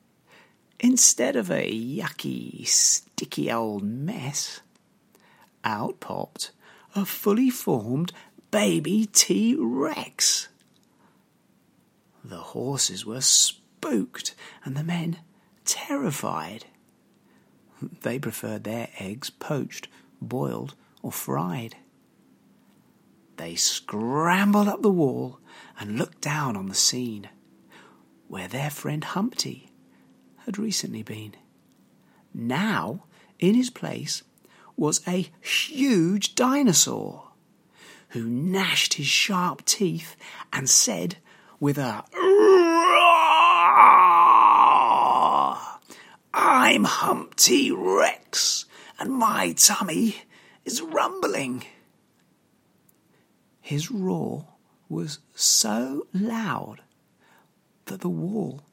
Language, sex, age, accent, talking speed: English, male, 40-59, British, 85 wpm